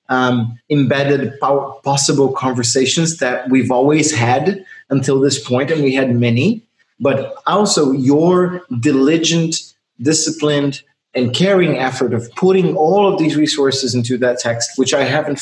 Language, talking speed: English, 140 wpm